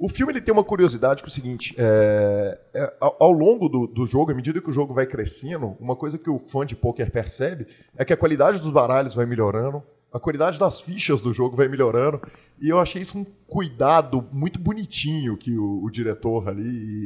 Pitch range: 115-160 Hz